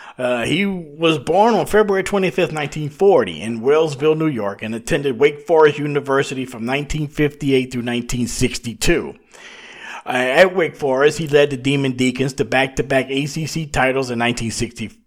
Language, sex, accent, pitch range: English, male, American, 130-170 Hz